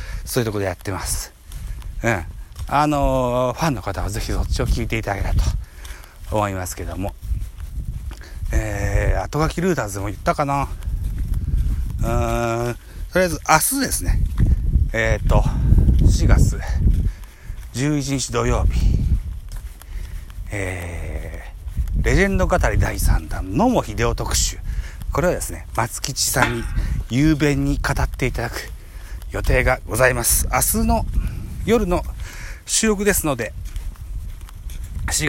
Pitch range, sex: 80-115 Hz, male